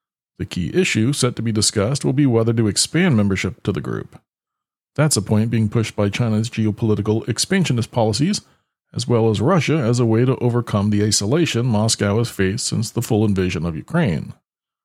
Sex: male